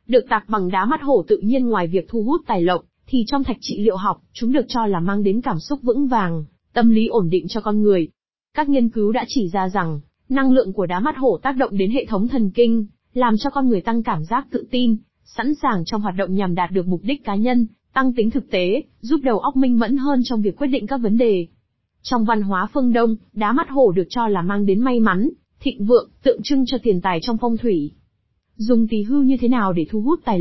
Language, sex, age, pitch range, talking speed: Vietnamese, female, 20-39, 195-255 Hz, 255 wpm